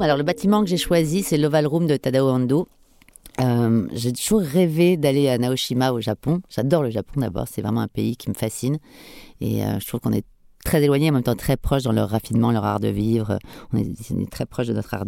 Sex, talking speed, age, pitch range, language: female, 245 wpm, 30-49, 105-140 Hz, French